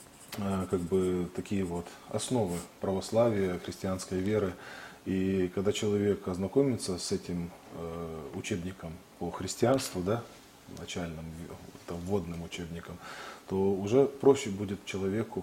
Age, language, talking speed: 20-39, Russian, 105 wpm